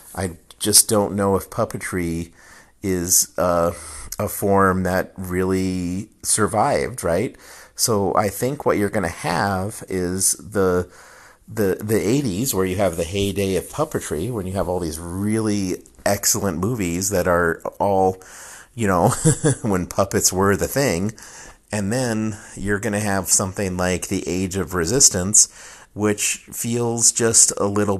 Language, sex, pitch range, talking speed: English, male, 95-110 Hz, 150 wpm